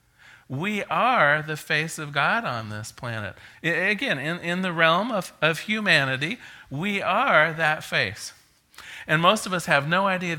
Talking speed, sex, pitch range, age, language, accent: 160 wpm, male, 130-180 Hz, 40-59, English, American